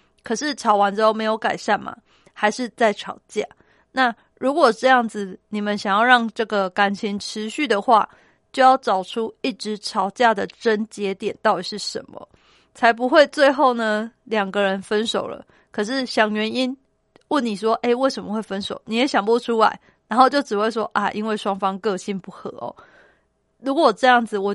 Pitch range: 210-250 Hz